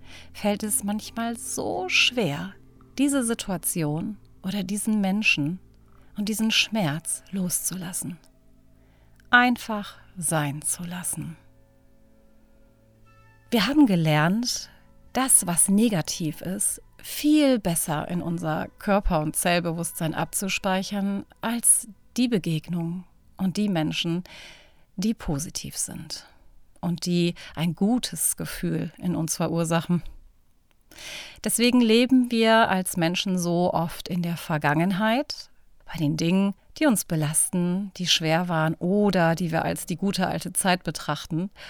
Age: 40-59